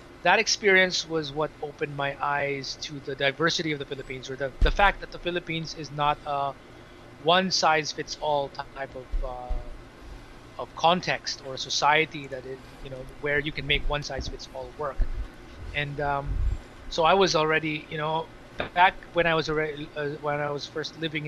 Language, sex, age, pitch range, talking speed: English, male, 20-39, 135-160 Hz, 190 wpm